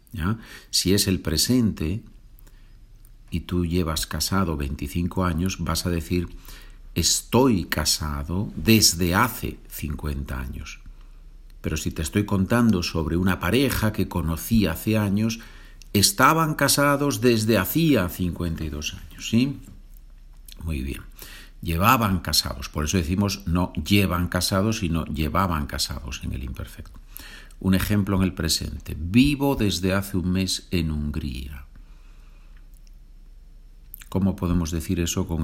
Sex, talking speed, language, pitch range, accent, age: male, 120 wpm, Spanish, 80-105 Hz, Spanish, 60-79